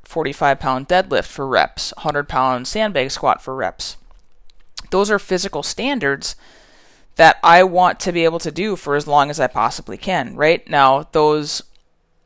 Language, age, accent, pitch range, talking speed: English, 20-39, American, 135-165 Hz, 160 wpm